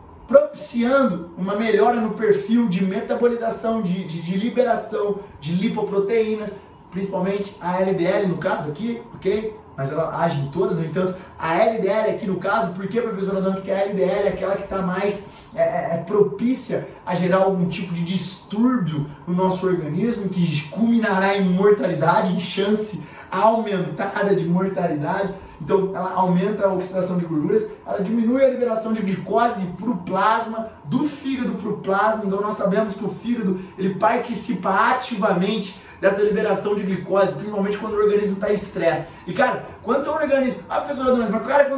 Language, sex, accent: Portuguese, male, Brazilian